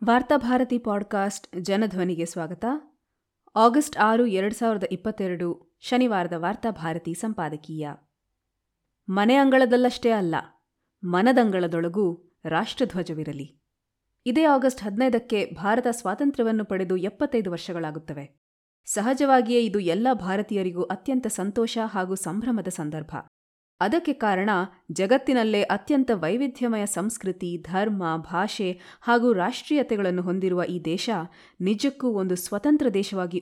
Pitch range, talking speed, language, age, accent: 170-230 Hz, 90 wpm, Kannada, 30-49, native